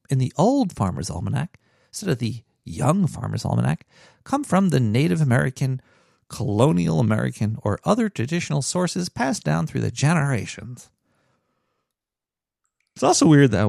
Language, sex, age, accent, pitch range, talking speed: English, male, 40-59, American, 120-160 Hz, 135 wpm